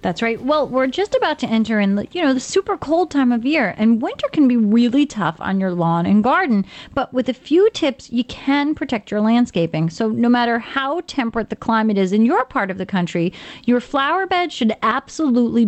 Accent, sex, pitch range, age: American, female, 205-265 Hz, 30-49